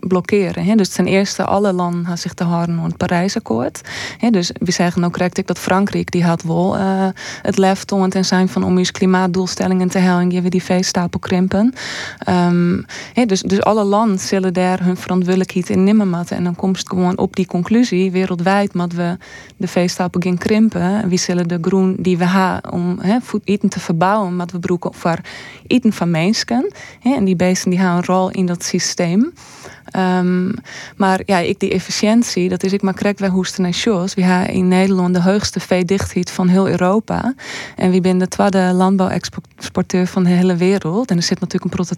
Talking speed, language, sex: 195 wpm, Dutch, female